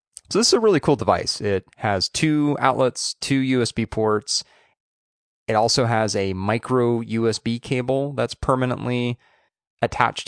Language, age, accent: English, 30-49, American